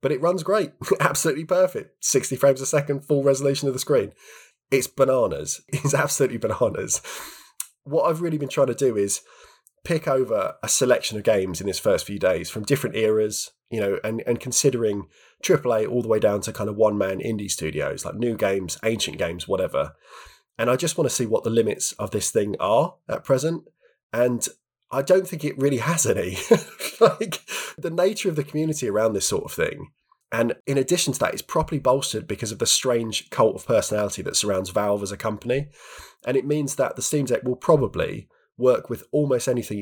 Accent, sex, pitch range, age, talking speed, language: British, male, 110-145 Hz, 20-39, 200 wpm, English